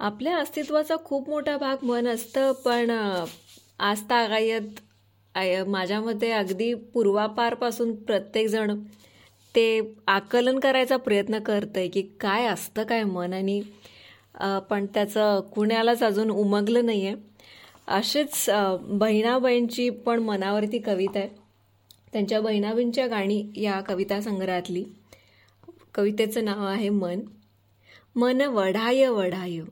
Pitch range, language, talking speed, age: 190-240 Hz, Marathi, 95 wpm, 20-39